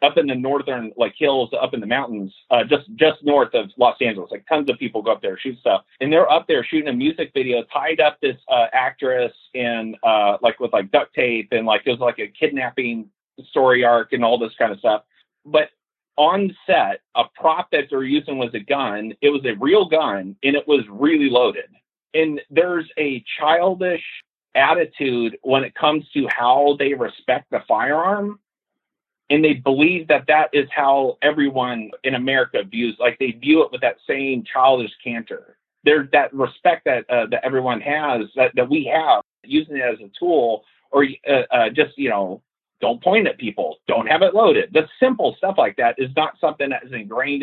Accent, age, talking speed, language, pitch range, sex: American, 40-59, 200 wpm, English, 125-165 Hz, male